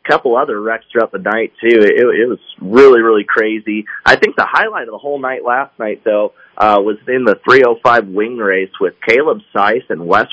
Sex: male